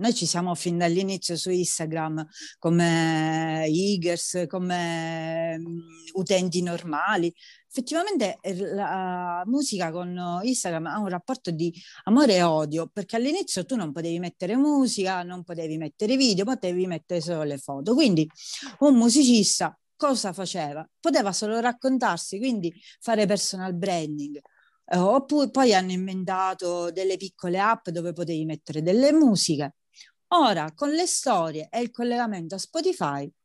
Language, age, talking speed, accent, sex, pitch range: Italian, 40-59, 130 wpm, native, female, 165-225 Hz